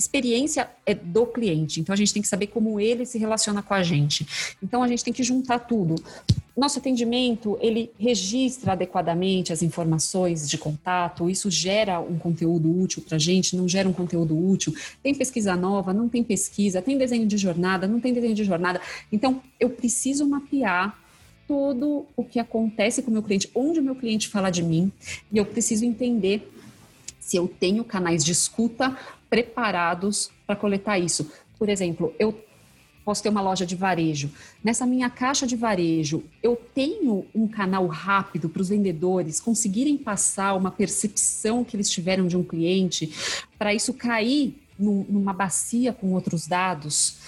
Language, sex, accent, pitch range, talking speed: Portuguese, female, Brazilian, 180-230 Hz, 170 wpm